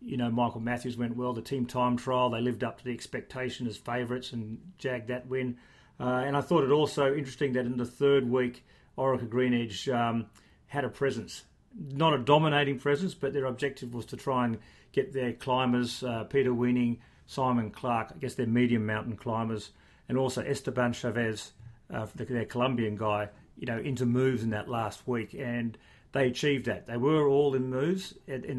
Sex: male